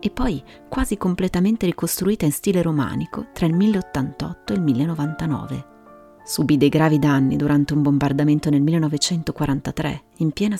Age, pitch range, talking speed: 30-49, 130-180 Hz, 140 wpm